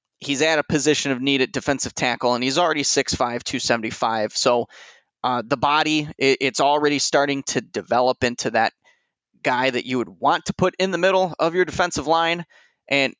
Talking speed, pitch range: 180 wpm, 125-165 Hz